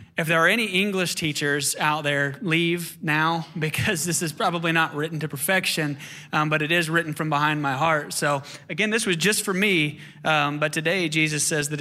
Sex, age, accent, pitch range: male, 20-39, American, 140-170 Hz